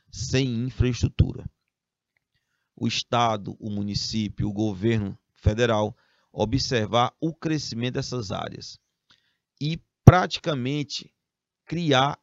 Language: Portuguese